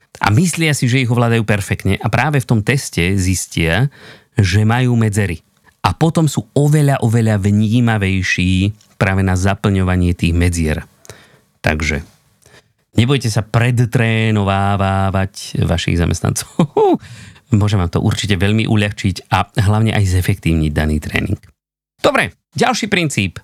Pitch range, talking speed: 100-130 Hz, 125 wpm